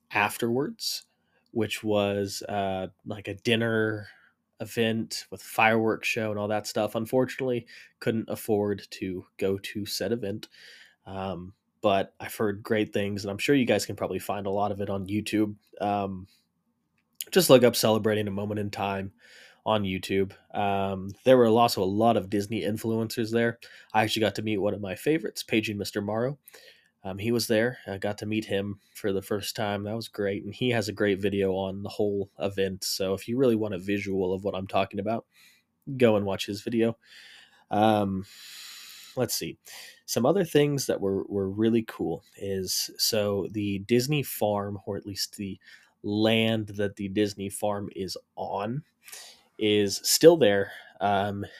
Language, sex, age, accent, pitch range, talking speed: English, male, 20-39, American, 100-110 Hz, 175 wpm